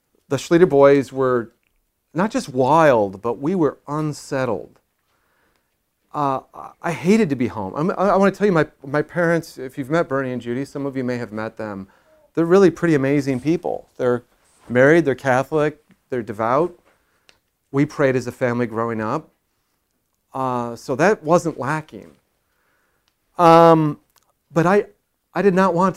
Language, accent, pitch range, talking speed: English, American, 120-155 Hz, 160 wpm